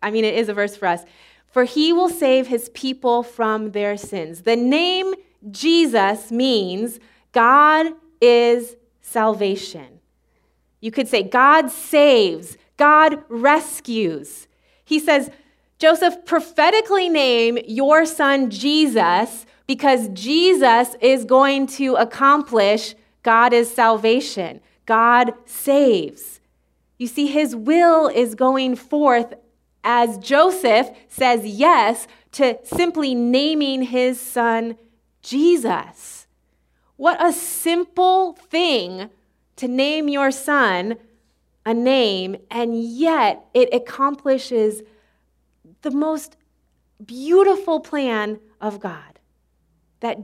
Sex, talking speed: female, 105 wpm